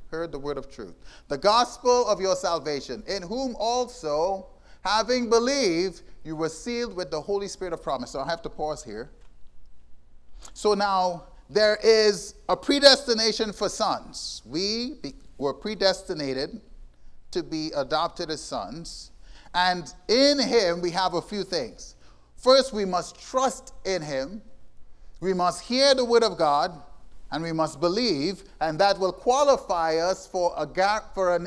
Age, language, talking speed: 30-49, English, 155 wpm